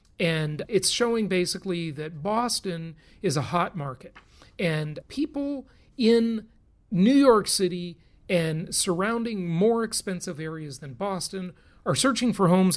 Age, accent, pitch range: 40-59, American, 155-220 Hz